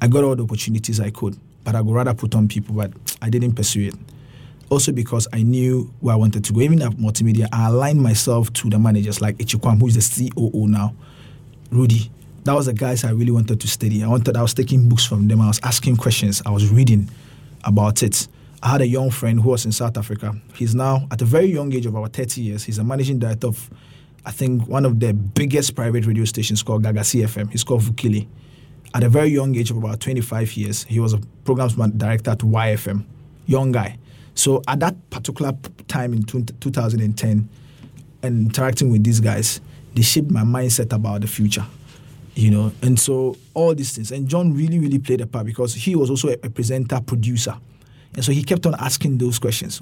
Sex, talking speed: male, 215 wpm